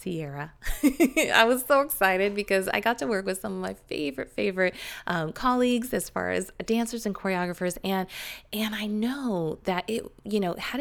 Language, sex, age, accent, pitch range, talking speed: English, female, 20-39, American, 160-220 Hz, 185 wpm